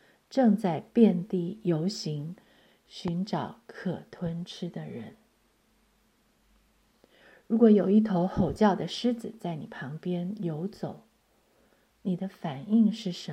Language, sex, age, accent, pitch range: Chinese, female, 50-69, native, 180-220 Hz